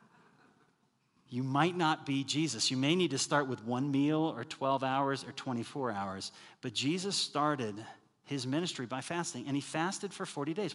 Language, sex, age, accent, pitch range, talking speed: English, male, 40-59, American, 125-155 Hz, 180 wpm